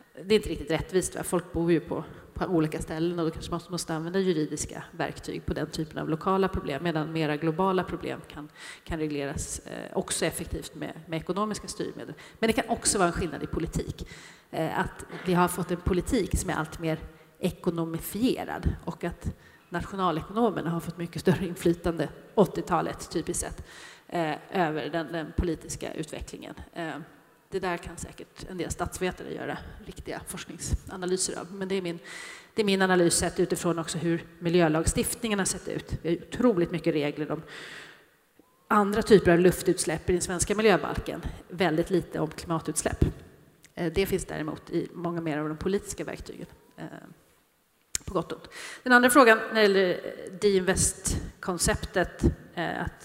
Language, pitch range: English, 160-190 Hz